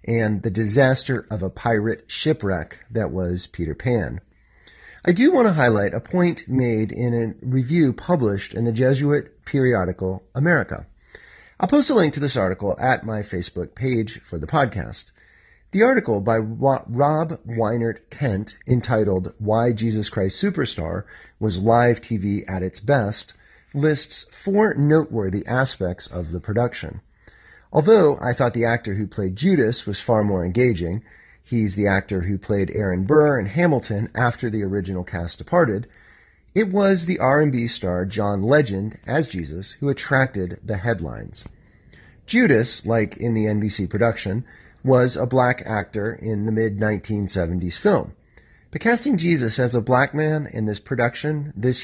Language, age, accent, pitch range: English, 40-59, American, 100-140 Hz